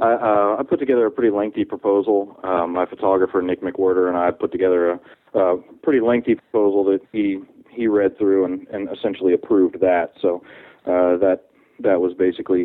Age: 30-49